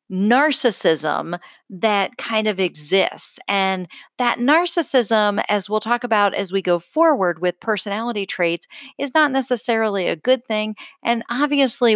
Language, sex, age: English, female, 50-69